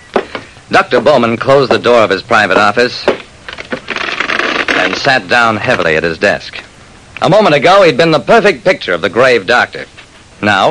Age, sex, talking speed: 50-69, male, 165 wpm